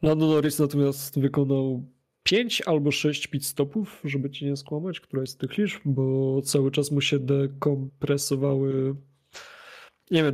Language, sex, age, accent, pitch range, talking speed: Polish, male, 20-39, native, 135-155 Hz, 140 wpm